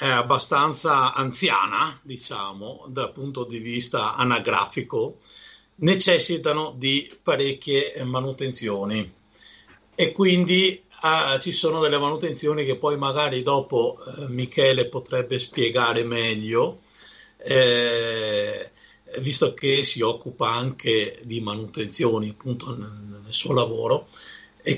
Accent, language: native, Italian